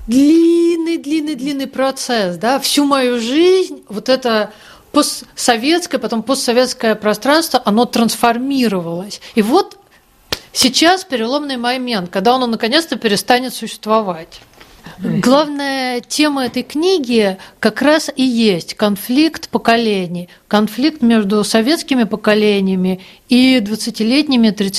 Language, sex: Russian, female